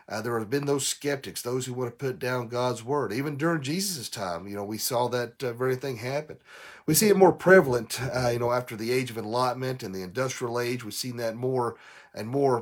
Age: 40-59